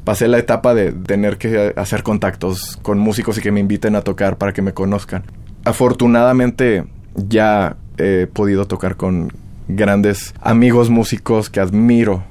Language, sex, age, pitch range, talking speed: Spanish, male, 20-39, 95-110 Hz, 150 wpm